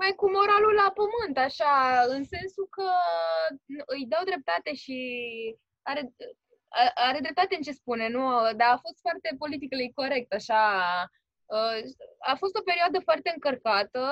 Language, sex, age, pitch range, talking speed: Romanian, female, 20-39, 225-320 Hz, 145 wpm